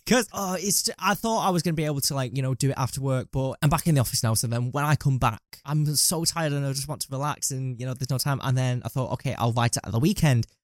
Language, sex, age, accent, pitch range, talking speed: English, male, 10-29, British, 115-155 Hz, 325 wpm